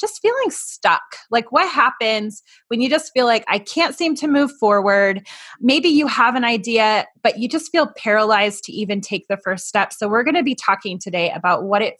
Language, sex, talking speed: English, female, 210 wpm